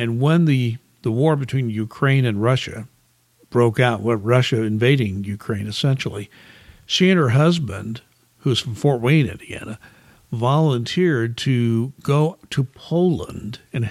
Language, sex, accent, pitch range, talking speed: English, male, American, 115-155 Hz, 130 wpm